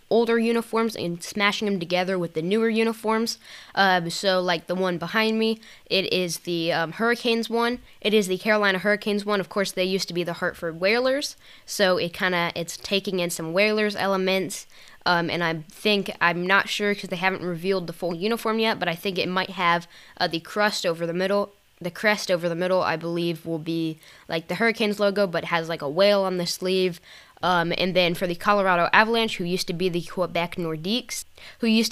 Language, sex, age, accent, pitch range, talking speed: English, female, 10-29, American, 170-205 Hz, 210 wpm